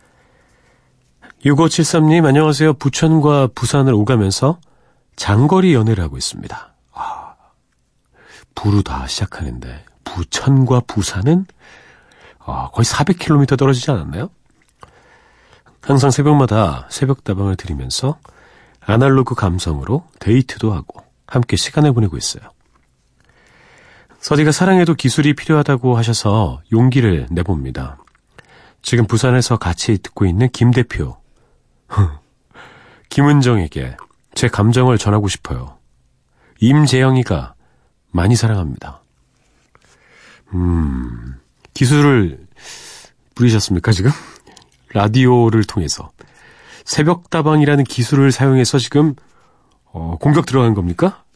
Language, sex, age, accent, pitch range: Korean, male, 40-59, native, 95-140 Hz